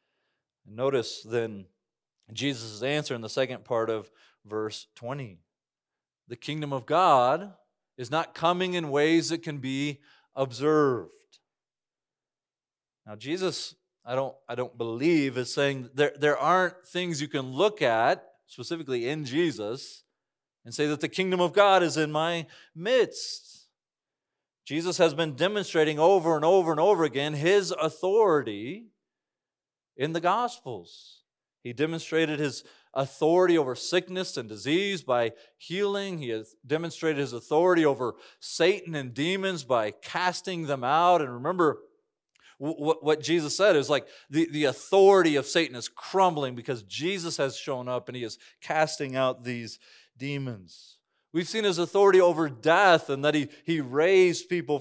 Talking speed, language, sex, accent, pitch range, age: 140 wpm, English, male, American, 135-175 Hz, 40-59